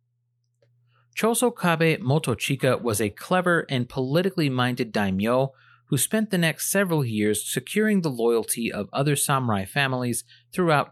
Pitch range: 120-160 Hz